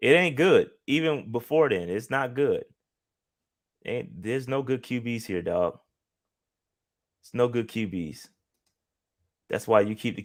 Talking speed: 145 wpm